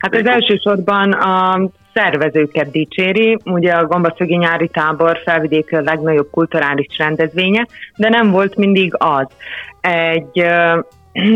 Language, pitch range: Hungarian, 145-180 Hz